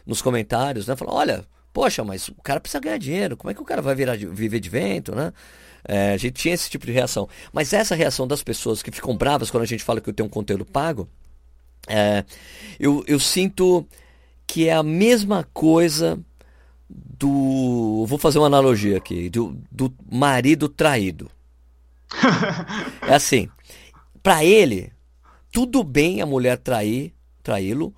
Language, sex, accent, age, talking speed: Portuguese, male, Brazilian, 50-69, 165 wpm